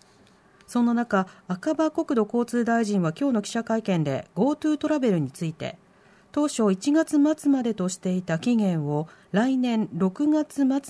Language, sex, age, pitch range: Japanese, female, 40-59, 190-280 Hz